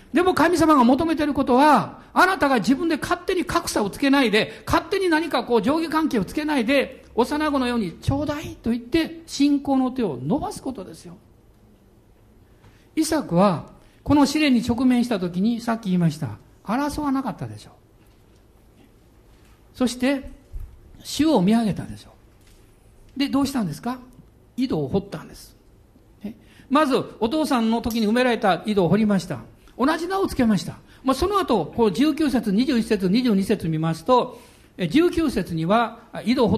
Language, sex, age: Japanese, male, 60-79